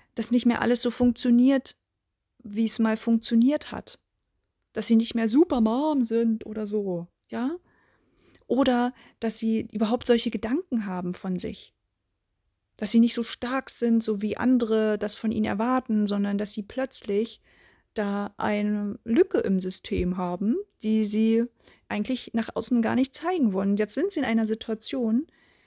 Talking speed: 160 wpm